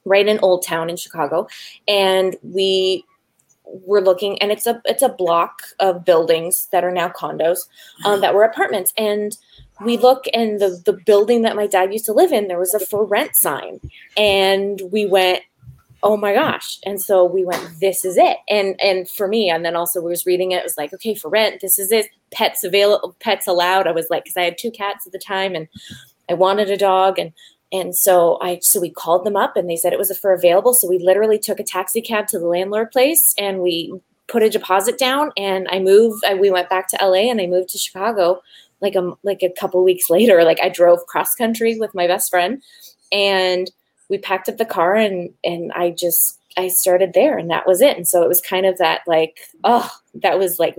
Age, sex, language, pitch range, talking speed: 20-39, female, English, 180-210 Hz, 230 wpm